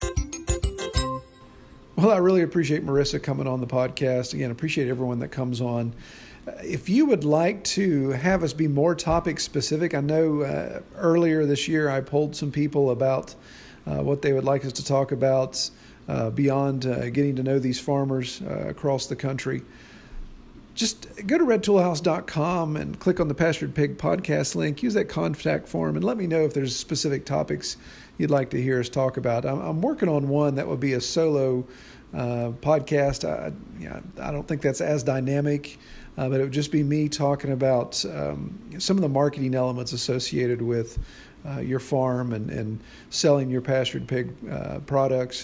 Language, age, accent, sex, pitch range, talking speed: English, 50-69, American, male, 125-150 Hz, 185 wpm